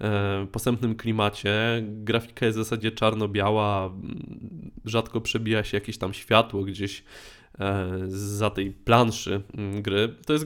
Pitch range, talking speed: 105-125 Hz, 115 wpm